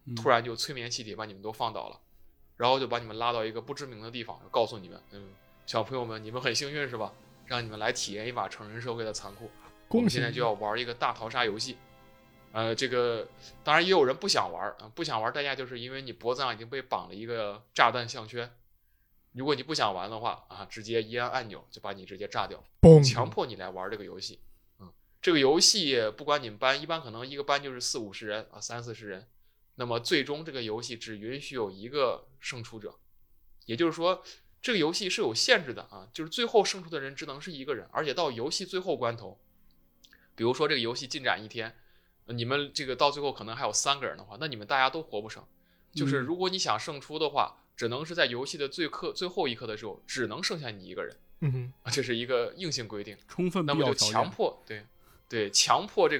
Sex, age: male, 20-39